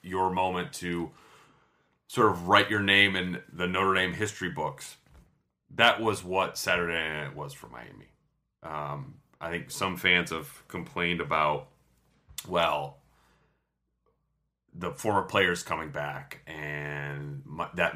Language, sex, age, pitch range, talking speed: English, male, 30-49, 75-90 Hz, 130 wpm